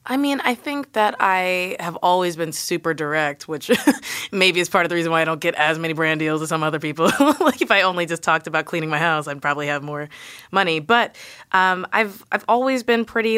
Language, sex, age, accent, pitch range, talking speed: English, female, 20-39, American, 155-200 Hz, 235 wpm